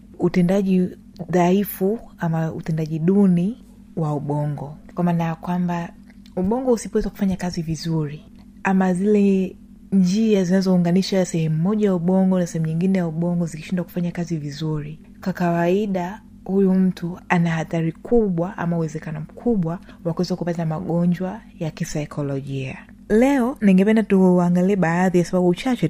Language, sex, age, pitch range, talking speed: Swahili, female, 20-39, 170-210 Hz, 125 wpm